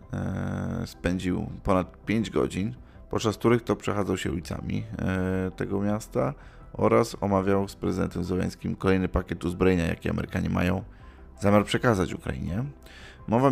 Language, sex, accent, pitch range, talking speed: Polish, male, native, 90-105 Hz, 120 wpm